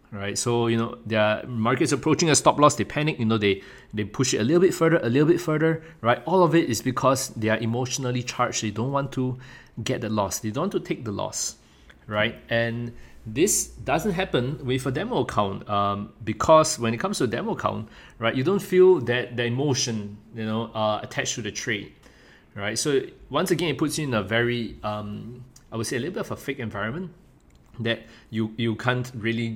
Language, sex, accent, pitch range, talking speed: English, male, Malaysian, 110-145 Hz, 220 wpm